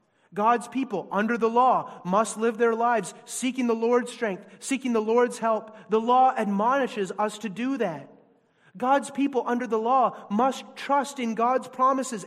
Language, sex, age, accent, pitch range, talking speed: English, male, 30-49, American, 200-245 Hz, 165 wpm